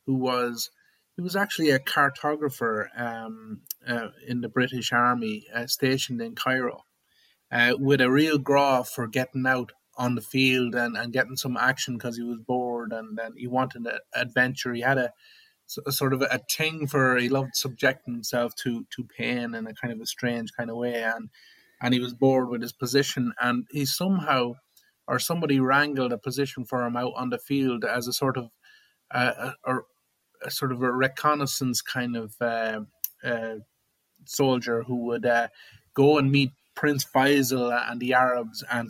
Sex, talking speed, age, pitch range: male, 185 wpm, 30-49, 120-135 Hz